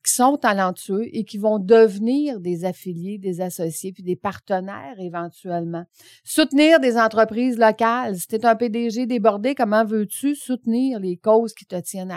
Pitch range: 190-250 Hz